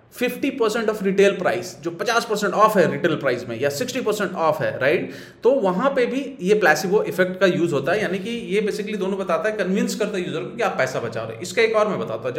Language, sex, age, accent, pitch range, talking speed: Hindi, male, 30-49, native, 165-215 Hz, 245 wpm